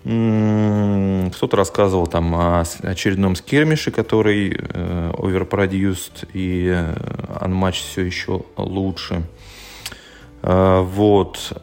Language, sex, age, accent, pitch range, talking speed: Russian, male, 30-49, native, 90-110 Hz, 70 wpm